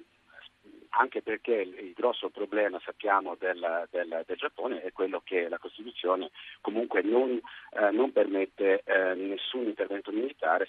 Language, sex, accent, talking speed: Italian, male, native, 135 wpm